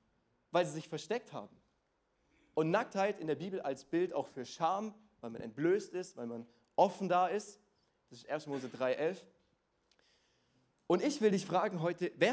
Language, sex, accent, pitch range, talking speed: German, male, German, 160-220 Hz, 175 wpm